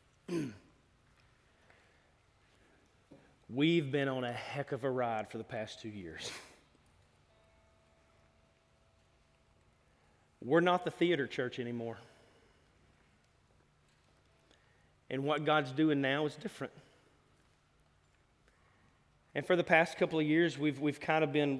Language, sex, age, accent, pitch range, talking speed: English, male, 30-49, American, 125-190 Hz, 105 wpm